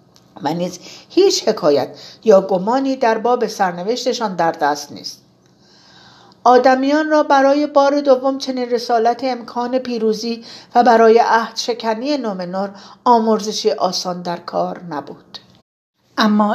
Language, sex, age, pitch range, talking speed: Persian, female, 50-69, 180-230 Hz, 110 wpm